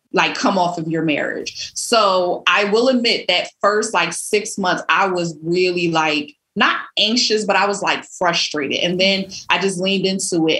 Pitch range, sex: 170-220 Hz, female